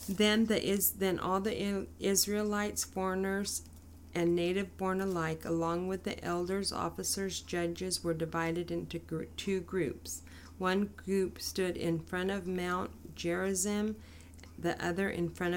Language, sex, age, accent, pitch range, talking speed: English, female, 40-59, American, 160-185 Hz, 125 wpm